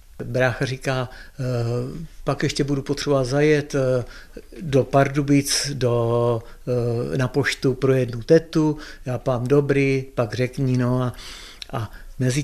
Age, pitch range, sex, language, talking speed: 60-79, 120-160 Hz, male, Czech, 105 wpm